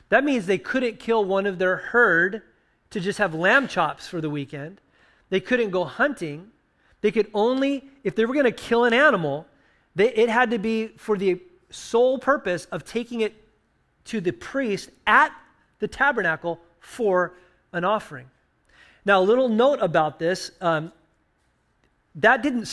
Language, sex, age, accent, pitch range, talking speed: English, male, 30-49, American, 170-220 Hz, 160 wpm